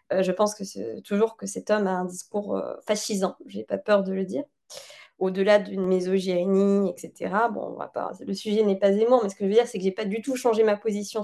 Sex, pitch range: female, 205-260 Hz